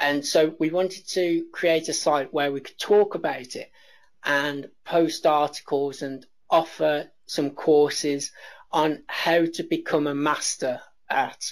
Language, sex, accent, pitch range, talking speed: English, male, British, 150-185 Hz, 145 wpm